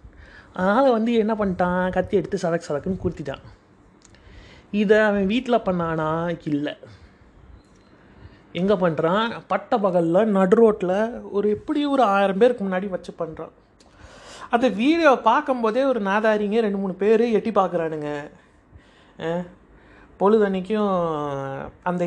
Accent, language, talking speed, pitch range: native, Tamil, 110 wpm, 175-240 Hz